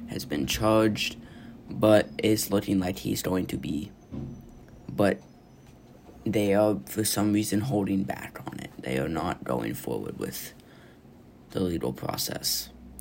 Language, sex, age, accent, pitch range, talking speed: English, male, 20-39, American, 85-105 Hz, 140 wpm